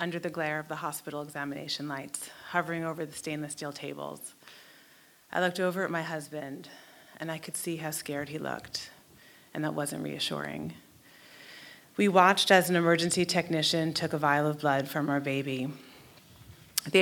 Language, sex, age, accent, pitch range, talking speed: English, female, 30-49, American, 145-175 Hz, 165 wpm